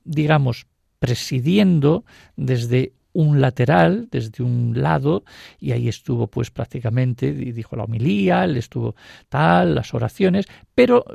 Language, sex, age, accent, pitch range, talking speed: Spanish, male, 50-69, Spanish, 125-165 Hz, 125 wpm